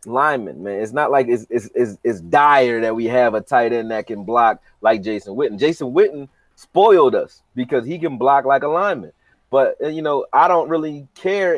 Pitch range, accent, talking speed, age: 120-160 Hz, American, 205 wpm, 30-49